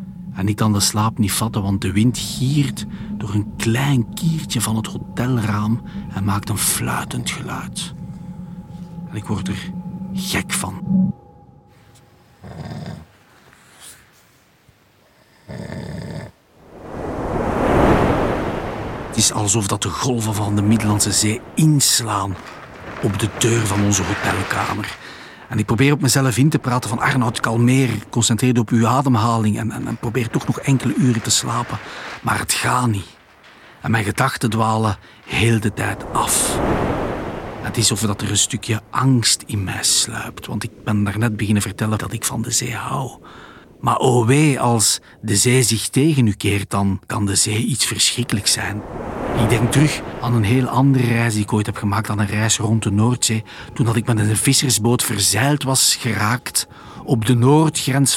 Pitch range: 105-130 Hz